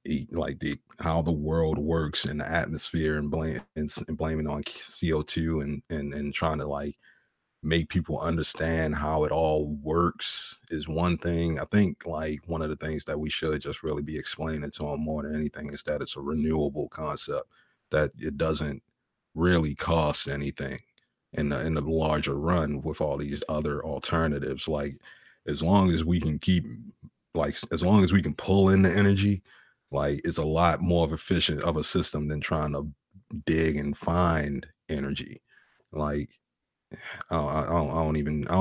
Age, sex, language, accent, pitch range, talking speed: 30-49, male, English, American, 75-85 Hz, 180 wpm